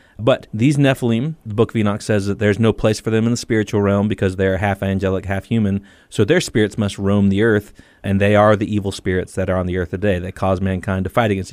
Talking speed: 255 wpm